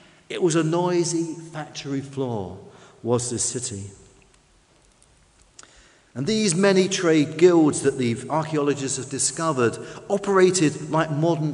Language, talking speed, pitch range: English, 115 wpm, 135-190 Hz